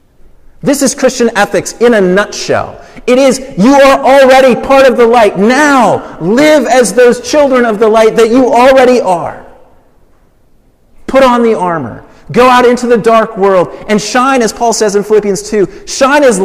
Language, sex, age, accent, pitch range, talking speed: English, male, 40-59, American, 150-225 Hz, 175 wpm